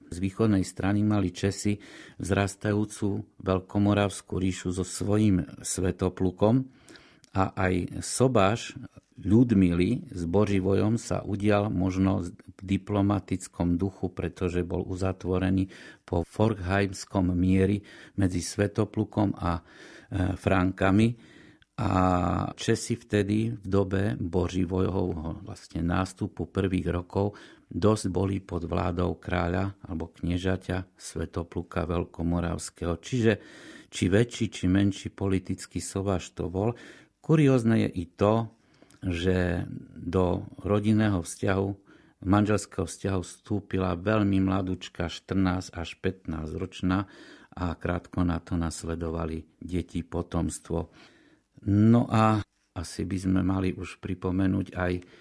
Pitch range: 90-105 Hz